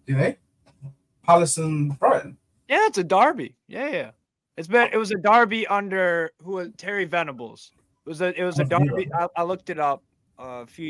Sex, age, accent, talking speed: male, 20-39, American, 170 wpm